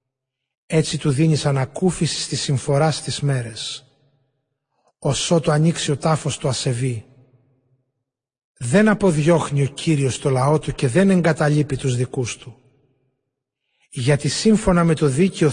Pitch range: 130-160 Hz